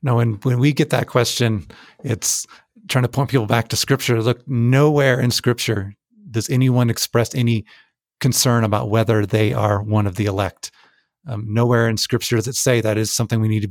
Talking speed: 195 wpm